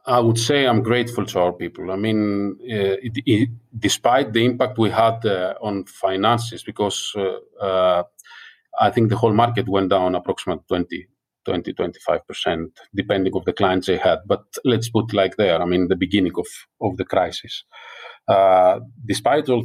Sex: male